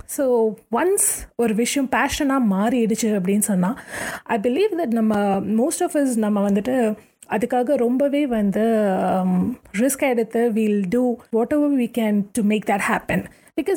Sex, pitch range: female, 215-270 Hz